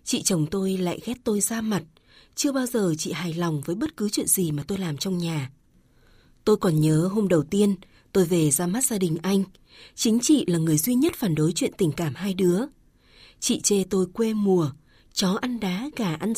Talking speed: 220 wpm